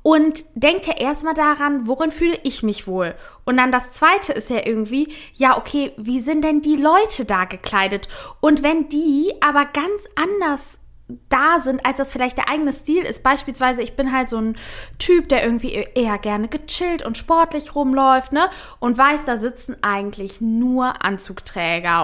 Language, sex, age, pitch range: German, female, 20-39, 230-300 Hz